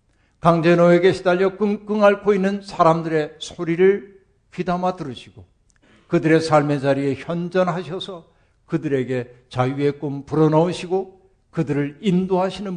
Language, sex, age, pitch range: Korean, male, 60-79, 125-175 Hz